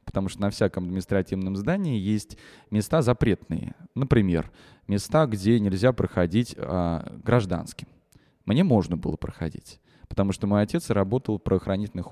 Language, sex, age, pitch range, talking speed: Russian, male, 20-39, 90-115 Hz, 135 wpm